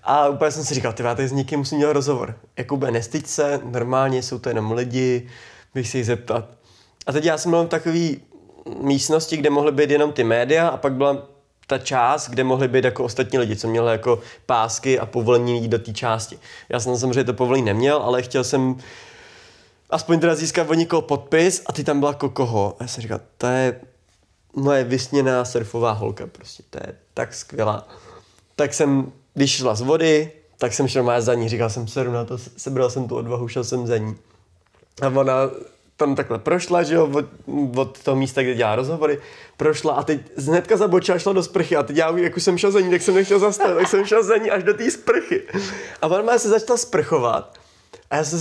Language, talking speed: Czech, 210 wpm